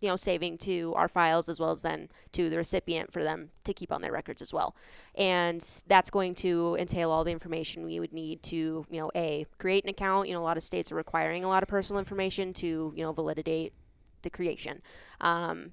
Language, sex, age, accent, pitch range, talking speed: English, female, 20-39, American, 155-180 Hz, 230 wpm